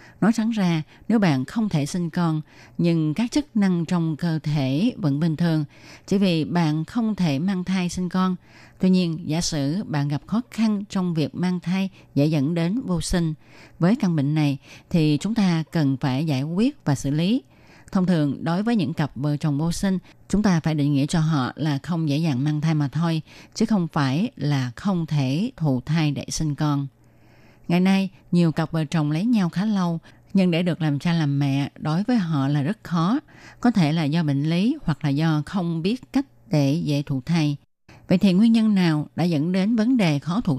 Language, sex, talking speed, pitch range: Vietnamese, female, 215 wpm, 150-190 Hz